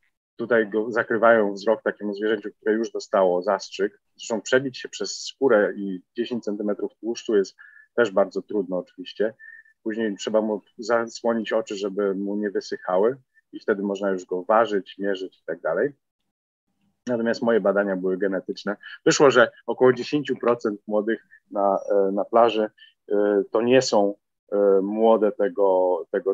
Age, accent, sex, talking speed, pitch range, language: 40-59, native, male, 140 wpm, 100-135 Hz, Polish